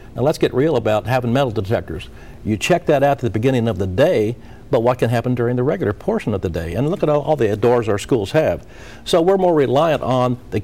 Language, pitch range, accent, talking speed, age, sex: English, 105-135 Hz, American, 250 wpm, 60-79, male